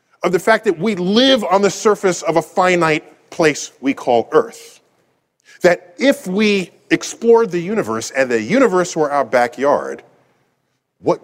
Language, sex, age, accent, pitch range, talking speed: English, male, 40-59, American, 125-195 Hz, 155 wpm